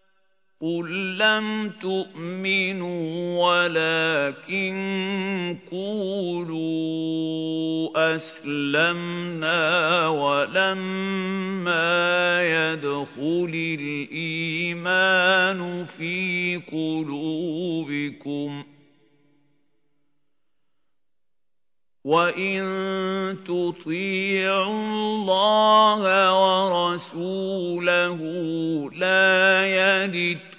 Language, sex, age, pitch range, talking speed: Arabic, male, 50-69, 155-190 Hz, 30 wpm